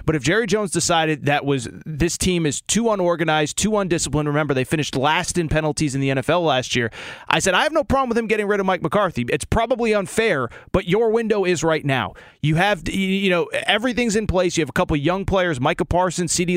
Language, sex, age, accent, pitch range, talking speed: English, male, 30-49, American, 145-180 Hz, 230 wpm